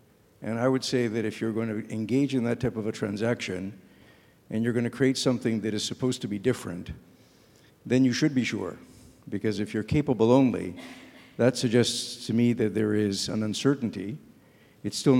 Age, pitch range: 60-79, 105-120 Hz